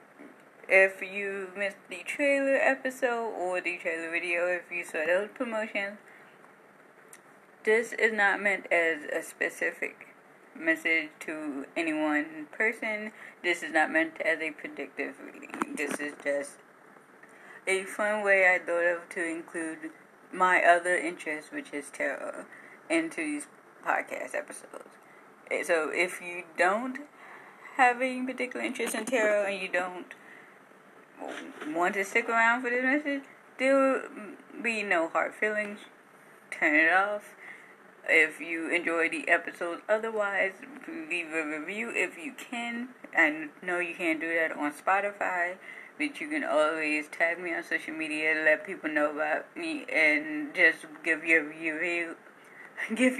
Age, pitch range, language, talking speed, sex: 20-39, 165-255 Hz, English, 140 wpm, female